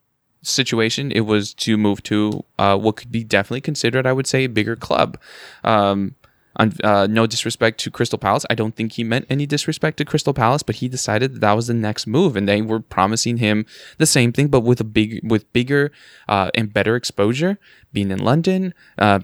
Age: 10-29